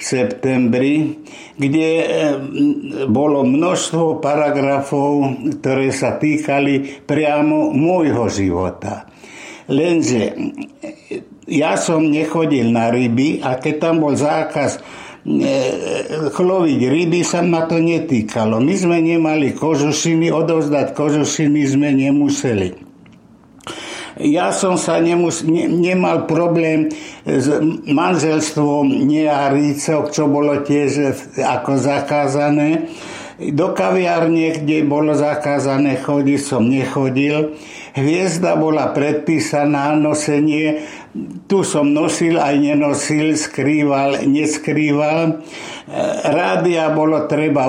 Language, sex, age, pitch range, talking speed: Slovak, male, 60-79, 140-160 Hz, 95 wpm